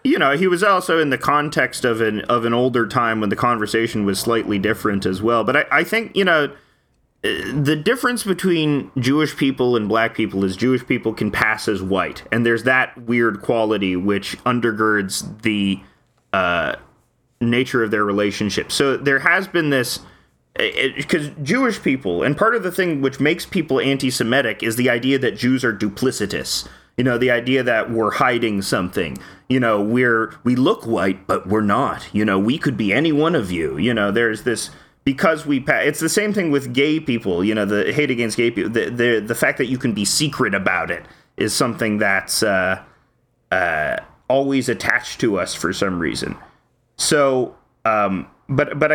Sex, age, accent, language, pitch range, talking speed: male, 30-49, American, English, 110-140 Hz, 190 wpm